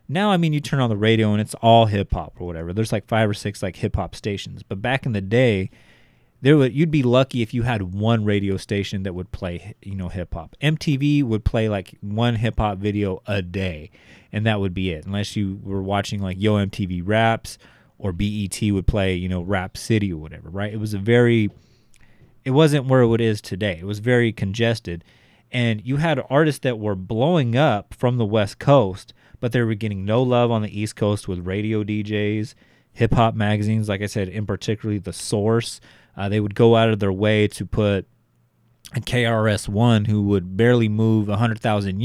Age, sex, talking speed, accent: 30-49, male, 205 wpm, American